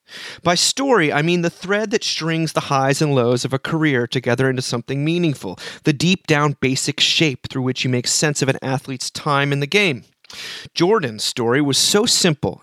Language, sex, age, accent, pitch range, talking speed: English, male, 30-49, American, 130-165 Hz, 190 wpm